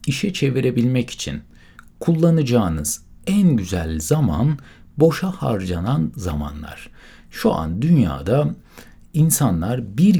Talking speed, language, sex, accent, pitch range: 90 wpm, Turkish, male, native, 95-150 Hz